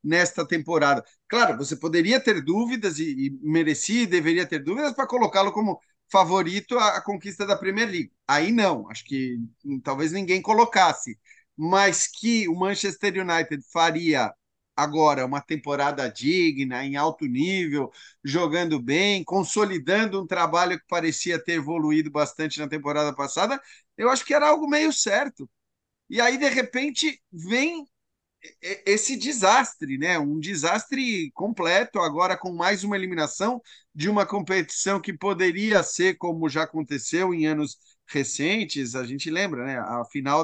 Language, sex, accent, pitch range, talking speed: Portuguese, male, Brazilian, 150-205 Hz, 145 wpm